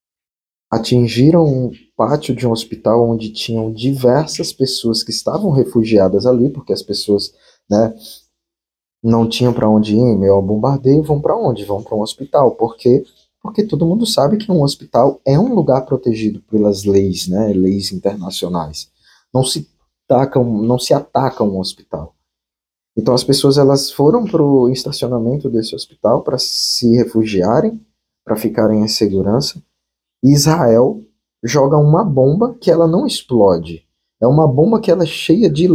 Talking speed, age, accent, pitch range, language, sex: 150 wpm, 20-39, Brazilian, 105-140 Hz, Portuguese, male